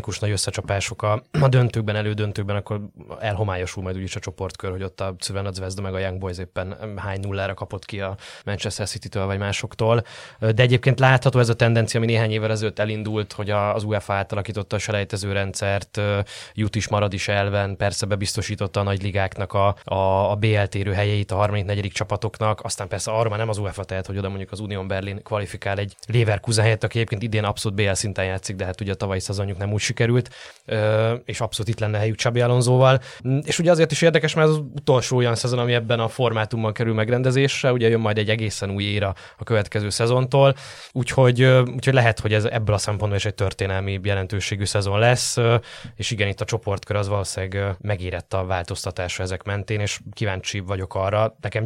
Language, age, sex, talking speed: Hungarian, 20-39, male, 195 wpm